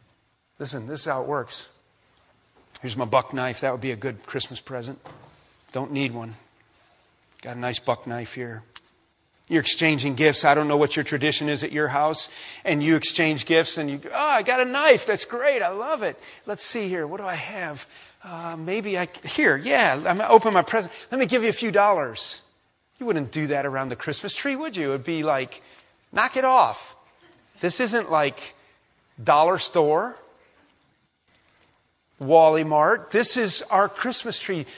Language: English